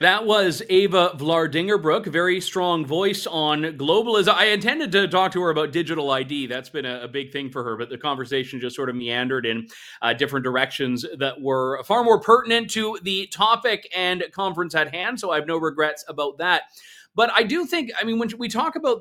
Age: 30-49